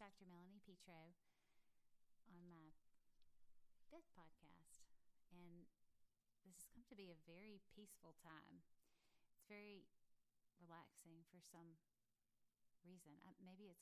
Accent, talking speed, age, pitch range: American, 110 wpm, 30-49, 160-190 Hz